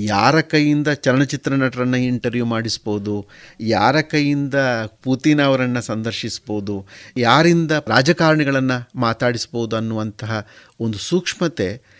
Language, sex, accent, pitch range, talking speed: Kannada, male, native, 120-160 Hz, 85 wpm